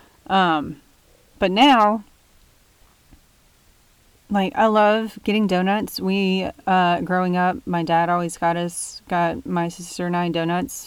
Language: English